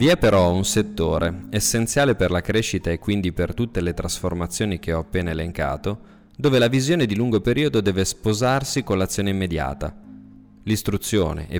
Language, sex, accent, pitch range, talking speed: Italian, male, native, 85-115 Hz, 165 wpm